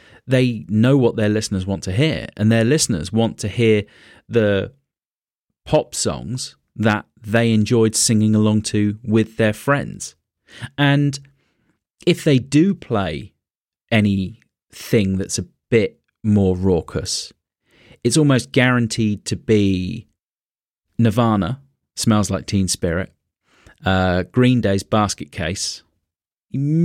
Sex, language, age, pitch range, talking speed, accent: male, English, 30-49, 95-125 Hz, 120 wpm, British